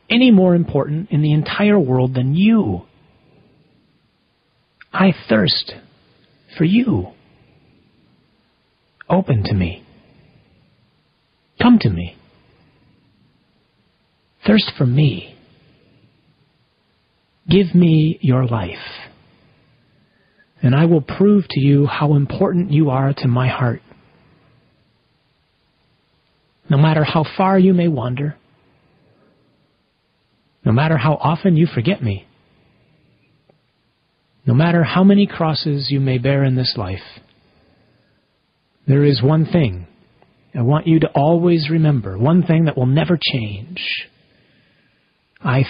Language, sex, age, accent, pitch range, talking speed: English, male, 40-59, American, 125-170 Hz, 105 wpm